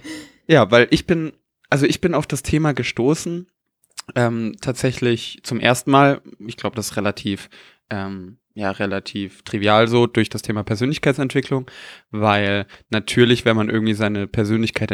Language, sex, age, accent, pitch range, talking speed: German, male, 20-39, German, 105-130 Hz, 150 wpm